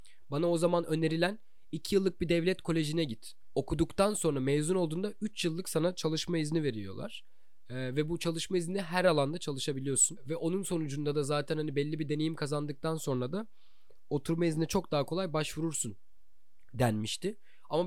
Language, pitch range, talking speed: Turkish, 135-175 Hz, 160 wpm